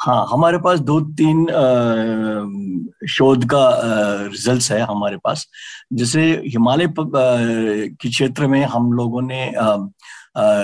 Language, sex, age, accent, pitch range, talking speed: Hindi, male, 50-69, native, 120-155 Hz, 125 wpm